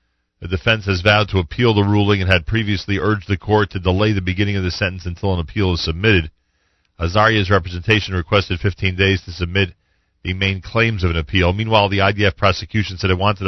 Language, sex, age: English, male, 40-59